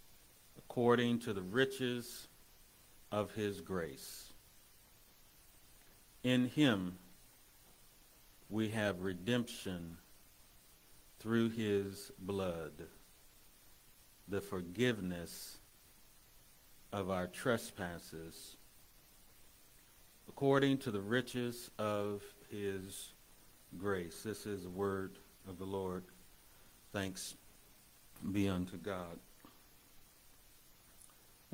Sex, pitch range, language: male, 90-110 Hz, English